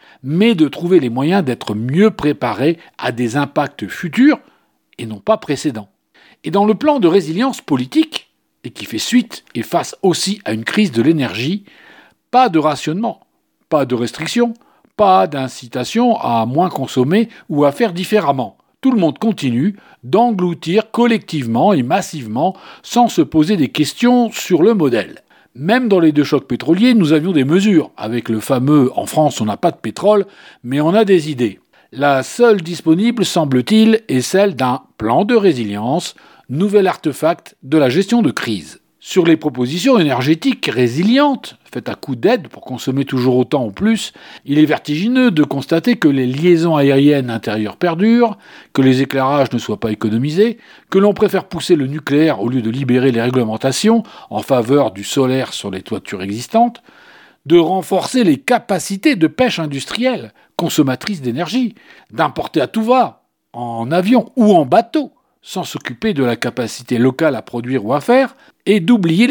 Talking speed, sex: 165 wpm, male